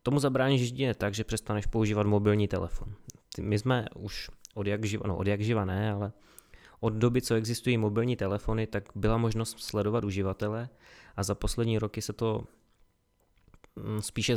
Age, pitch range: 20-39, 100-110 Hz